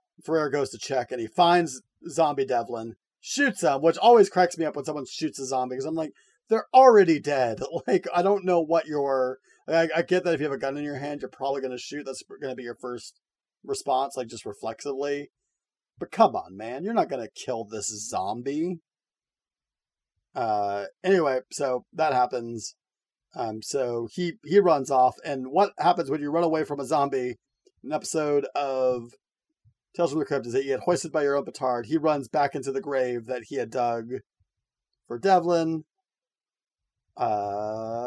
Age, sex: 30-49, male